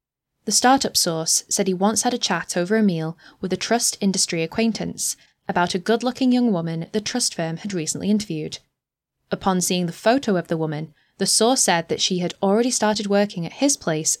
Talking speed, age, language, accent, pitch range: 205 wpm, 10-29, English, British, 160-210 Hz